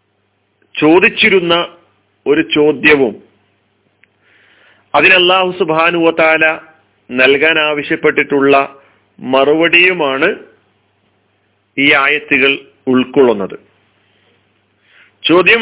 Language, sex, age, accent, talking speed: Malayalam, male, 40-59, native, 45 wpm